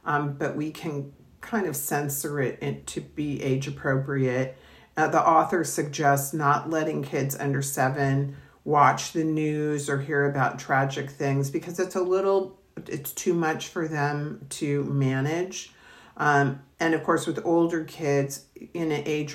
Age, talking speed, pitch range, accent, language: 50-69, 150 wpm, 140-165 Hz, American, English